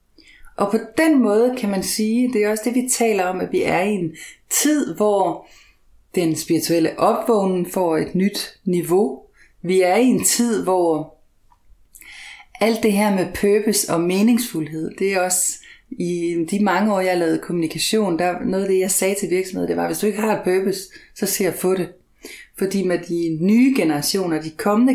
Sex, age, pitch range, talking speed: female, 30-49, 165-220 Hz, 190 wpm